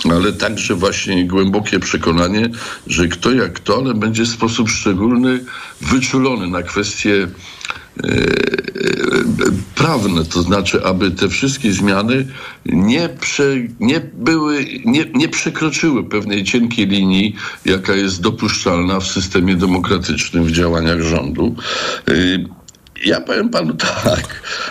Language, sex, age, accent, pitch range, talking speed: Polish, male, 60-79, native, 95-130 Hz, 120 wpm